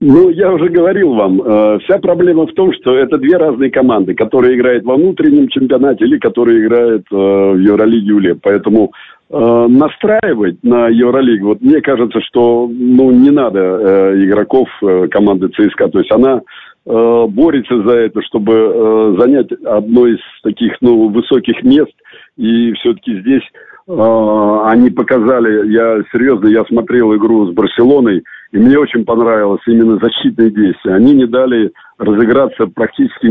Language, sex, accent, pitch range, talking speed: Russian, male, native, 105-130 Hz, 155 wpm